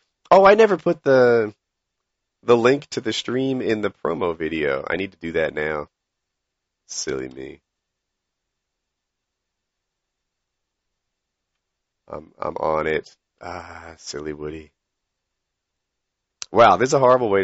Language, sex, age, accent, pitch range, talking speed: English, male, 40-59, American, 100-150 Hz, 120 wpm